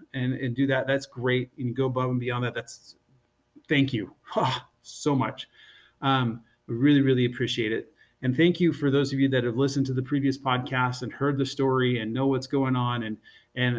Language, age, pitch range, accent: English, 30-49, 125-150 Hz, American